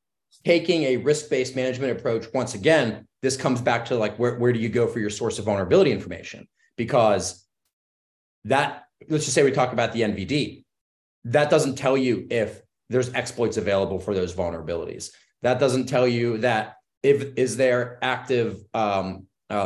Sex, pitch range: male, 105-135 Hz